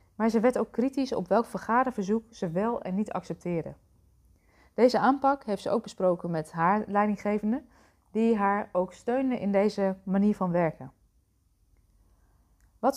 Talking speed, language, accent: 150 wpm, Dutch, Dutch